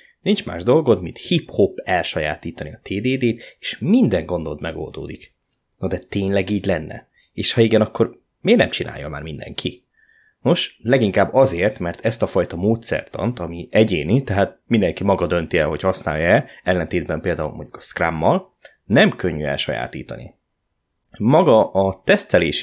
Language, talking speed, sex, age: Hungarian, 145 wpm, male, 20-39